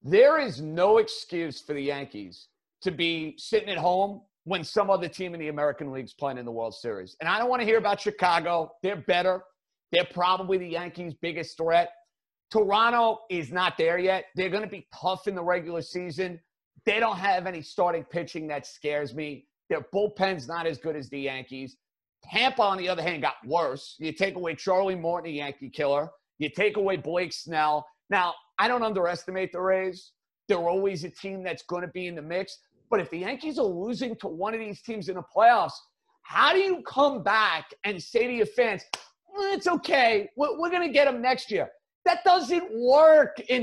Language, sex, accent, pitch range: English, male, American, 170-230 Hz